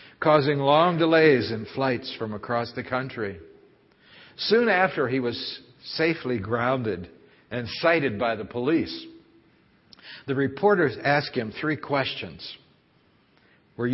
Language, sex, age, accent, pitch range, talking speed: English, male, 60-79, American, 120-160 Hz, 115 wpm